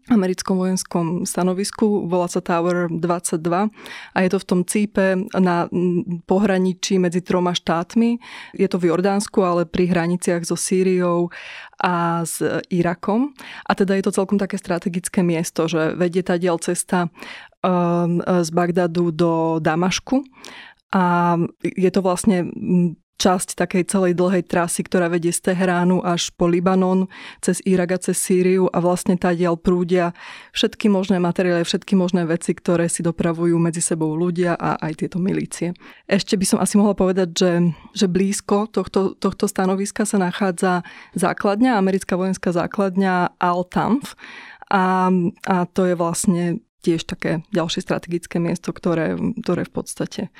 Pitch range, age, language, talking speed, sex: 175-195 Hz, 20-39, Slovak, 145 wpm, female